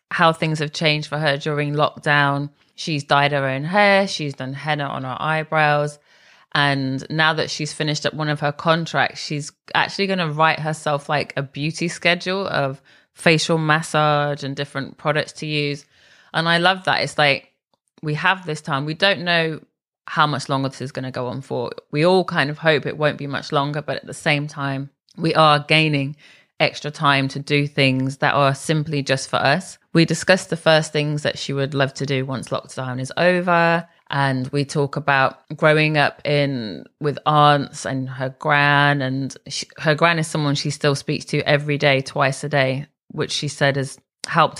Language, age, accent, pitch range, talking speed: English, 20-39, British, 140-155 Hz, 195 wpm